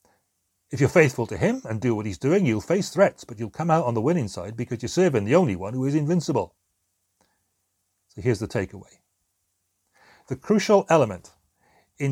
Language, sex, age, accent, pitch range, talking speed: English, male, 40-59, British, 95-155 Hz, 190 wpm